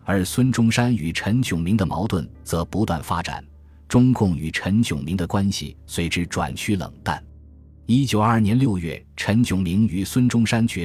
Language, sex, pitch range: Chinese, male, 85-115 Hz